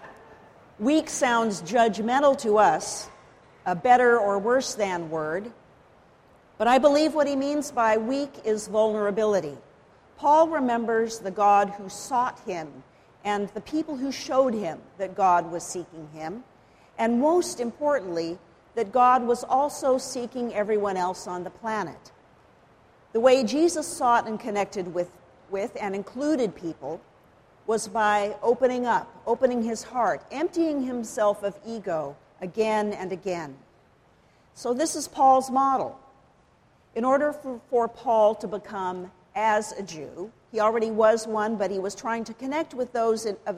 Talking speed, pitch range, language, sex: 145 wpm, 195-255 Hz, English, female